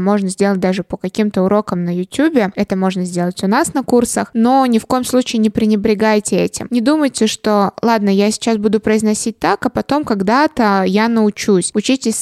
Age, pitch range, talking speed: 20-39, 200-235 Hz, 185 wpm